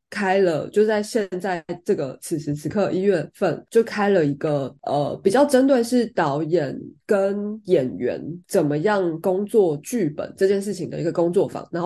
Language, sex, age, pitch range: Chinese, female, 20-39, 170-215 Hz